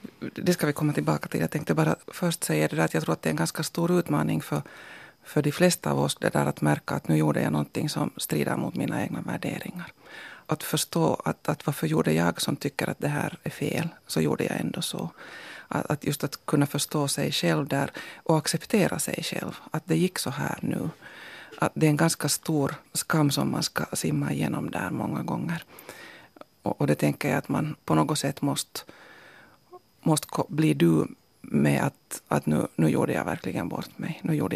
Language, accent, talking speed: Finnish, native, 210 wpm